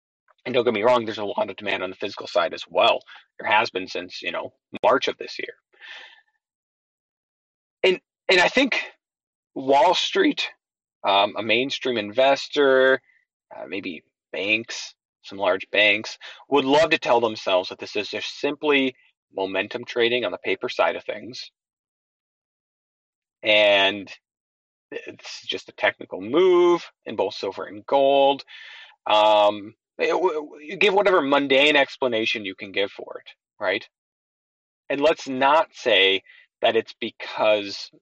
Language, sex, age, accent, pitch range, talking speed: English, male, 40-59, American, 110-155 Hz, 140 wpm